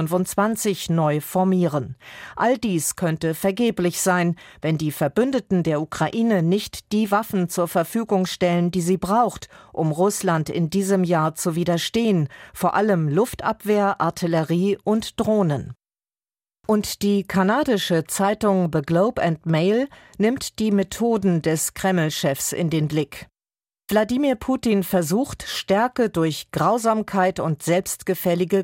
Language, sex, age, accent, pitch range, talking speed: German, female, 40-59, German, 165-210 Hz, 120 wpm